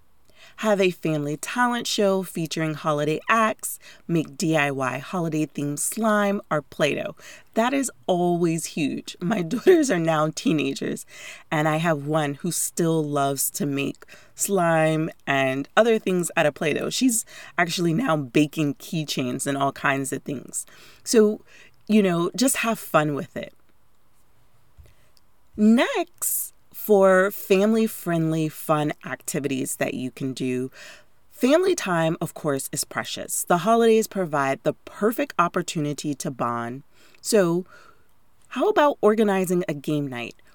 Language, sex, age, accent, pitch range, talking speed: English, female, 30-49, American, 150-215 Hz, 130 wpm